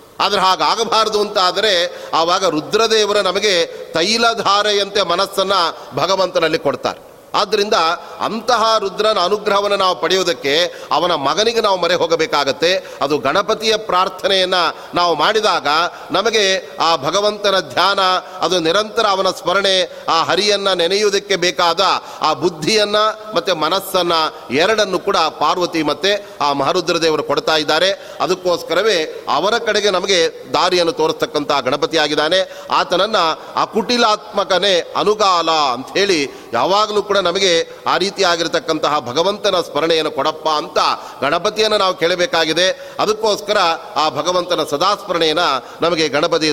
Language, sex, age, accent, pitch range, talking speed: Kannada, male, 40-59, native, 165-210 Hz, 105 wpm